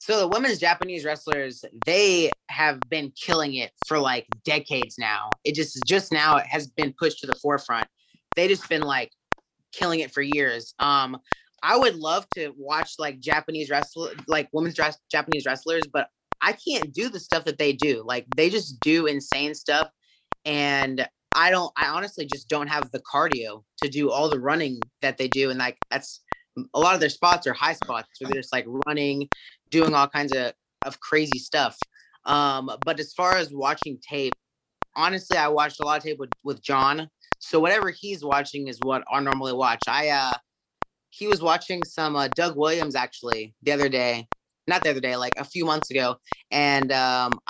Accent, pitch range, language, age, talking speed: American, 135-160 Hz, English, 20-39, 195 wpm